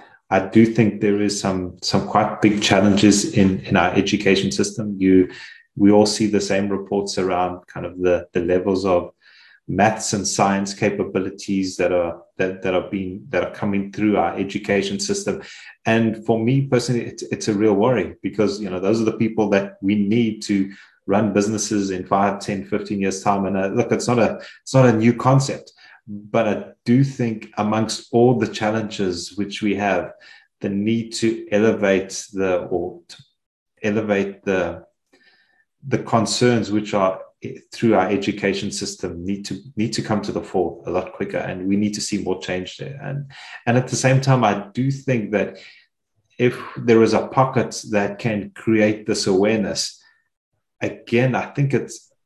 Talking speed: 180 wpm